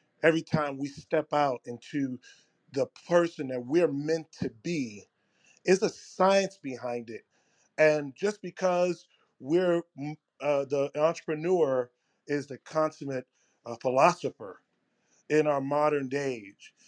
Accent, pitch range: American, 140-165 Hz